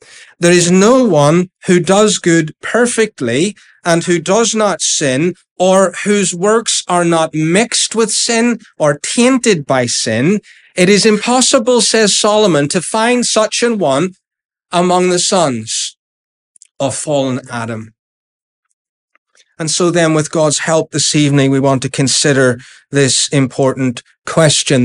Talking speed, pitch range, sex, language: 135 wpm, 145-210 Hz, male, English